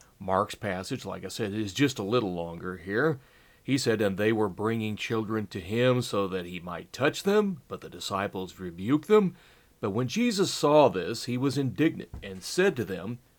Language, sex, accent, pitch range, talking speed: English, male, American, 105-150 Hz, 195 wpm